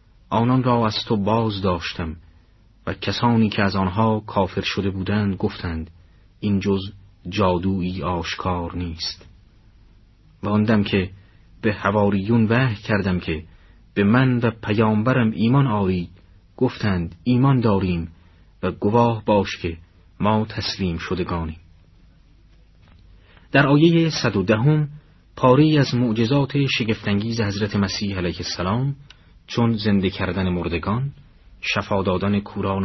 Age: 40-59